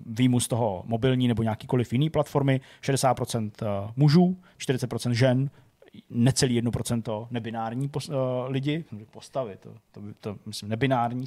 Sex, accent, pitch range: male, native, 115-140 Hz